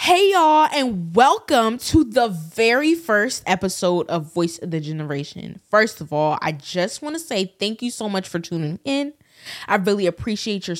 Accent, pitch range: American, 170-260 Hz